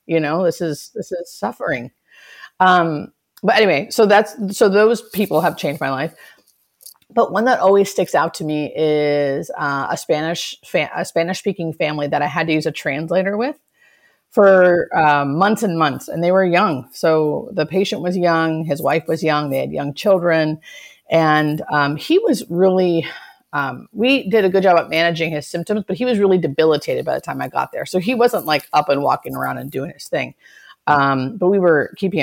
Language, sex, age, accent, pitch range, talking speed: English, female, 30-49, American, 155-195 Hz, 205 wpm